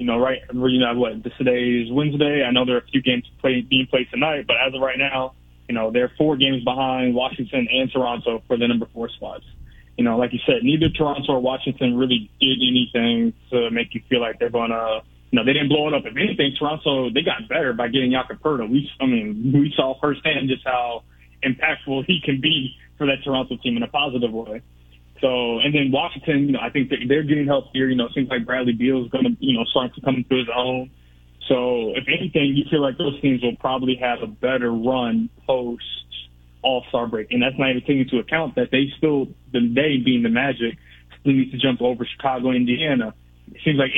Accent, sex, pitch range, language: American, male, 120-140 Hz, English